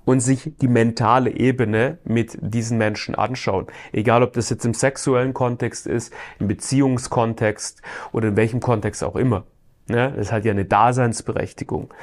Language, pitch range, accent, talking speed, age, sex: German, 110-135 Hz, German, 155 wpm, 30-49, male